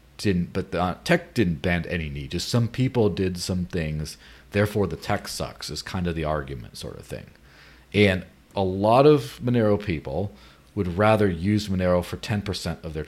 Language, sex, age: English, male, 40-59